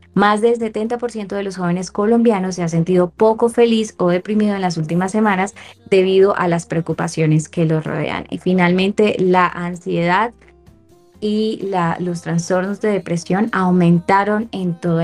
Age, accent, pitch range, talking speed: 20-39, Colombian, 175-215 Hz, 150 wpm